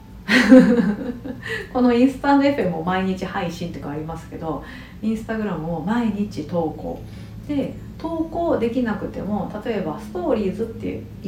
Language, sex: Japanese, female